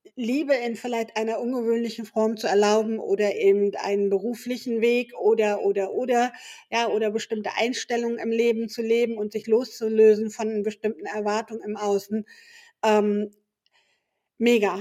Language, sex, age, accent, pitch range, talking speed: German, female, 50-69, German, 215-240 Hz, 140 wpm